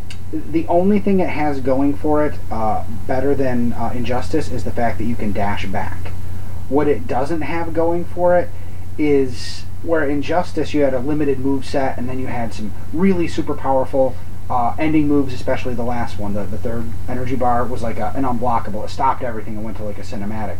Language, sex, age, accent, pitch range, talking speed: English, male, 30-49, American, 95-140 Hz, 205 wpm